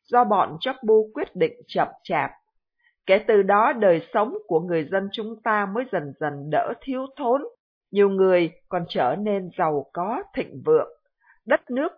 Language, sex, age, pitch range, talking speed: Vietnamese, female, 50-69, 185-250 Hz, 175 wpm